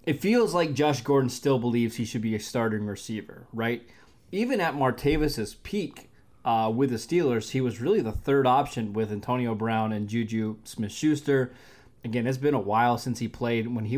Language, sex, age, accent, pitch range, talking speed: English, male, 20-39, American, 110-140 Hz, 190 wpm